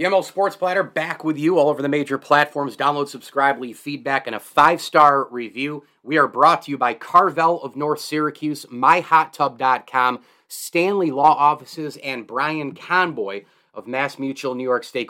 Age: 30-49